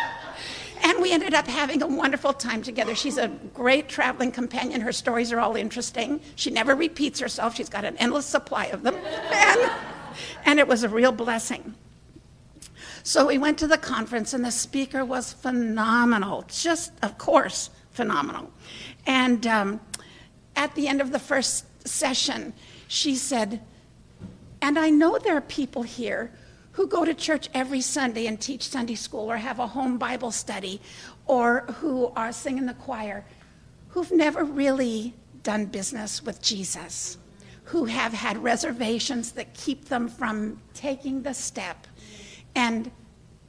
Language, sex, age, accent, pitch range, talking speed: English, female, 60-79, American, 230-285 Hz, 155 wpm